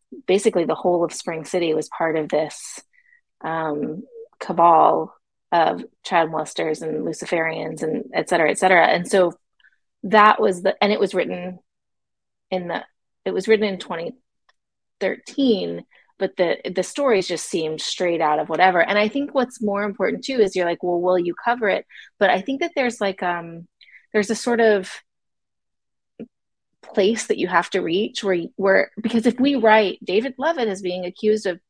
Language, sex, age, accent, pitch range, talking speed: English, female, 30-49, American, 180-225 Hz, 175 wpm